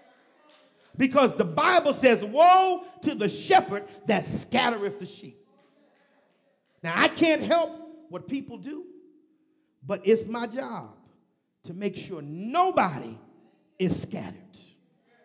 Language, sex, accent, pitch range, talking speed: English, male, American, 170-265 Hz, 115 wpm